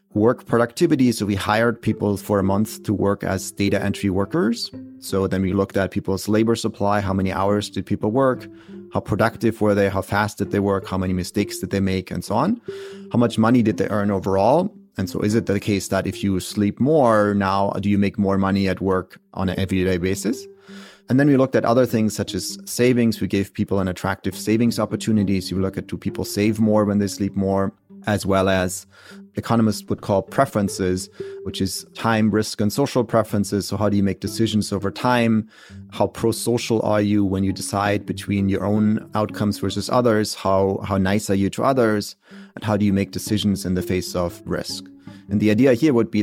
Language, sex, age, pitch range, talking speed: English, male, 30-49, 95-110 Hz, 215 wpm